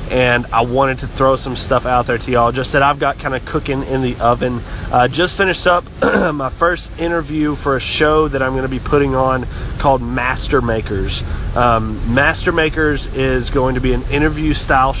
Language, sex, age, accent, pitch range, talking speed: English, male, 30-49, American, 110-135 Hz, 195 wpm